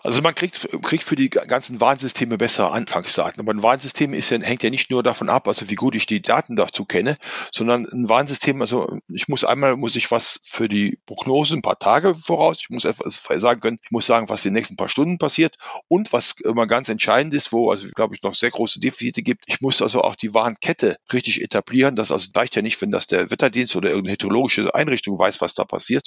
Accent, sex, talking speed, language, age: German, male, 235 wpm, German, 40-59